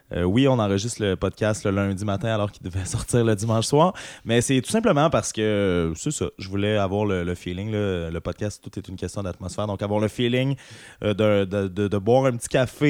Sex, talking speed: male, 240 wpm